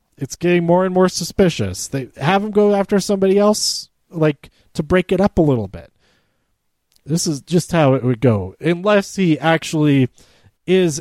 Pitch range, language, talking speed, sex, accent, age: 125-170 Hz, English, 175 wpm, male, American, 30-49